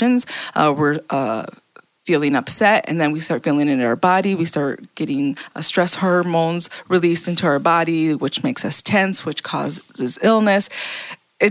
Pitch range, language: 155-195 Hz, English